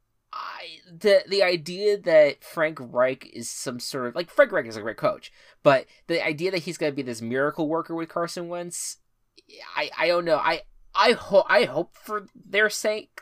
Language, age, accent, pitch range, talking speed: English, 20-39, American, 120-185 Hz, 200 wpm